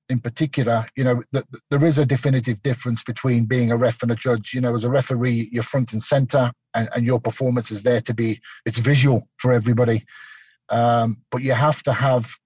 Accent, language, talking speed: British, English, 205 wpm